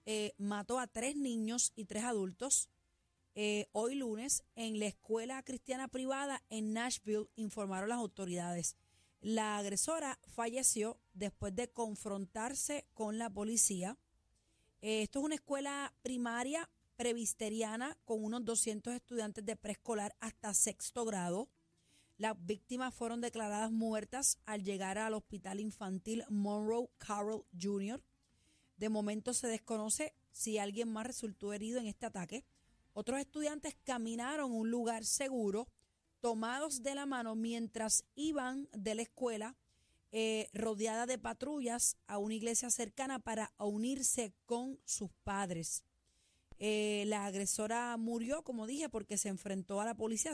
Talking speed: 135 wpm